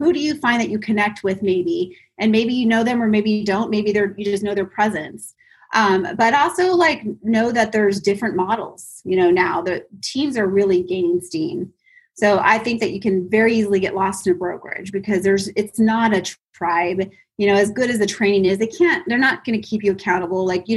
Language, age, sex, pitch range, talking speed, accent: English, 30-49, female, 190-225 Hz, 235 wpm, American